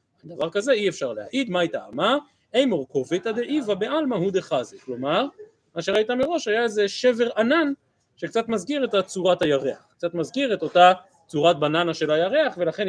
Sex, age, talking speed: male, 30-49, 180 wpm